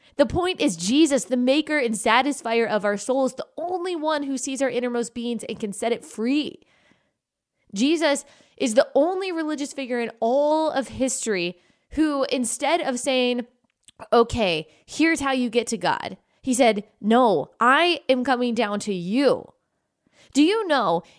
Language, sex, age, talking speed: English, female, 20-39, 160 wpm